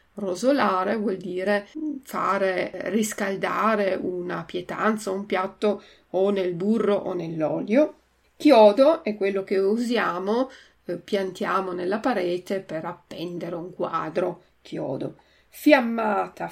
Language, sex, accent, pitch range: Italian, female, native, 185-220 Hz